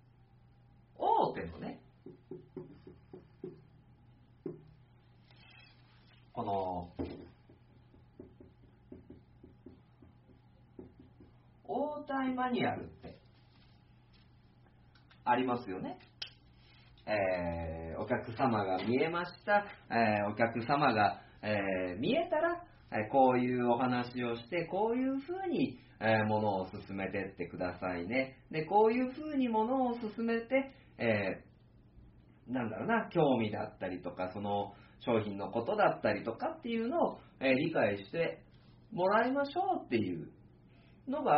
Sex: male